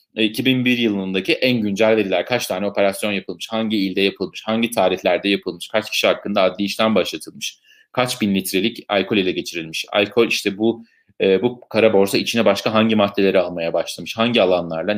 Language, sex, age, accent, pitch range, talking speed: Turkish, male, 30-49, native, 95-115 Hz, 165 wpm